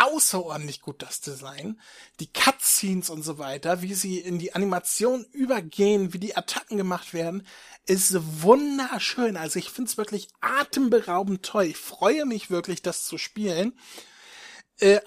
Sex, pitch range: male, 160-200 Hz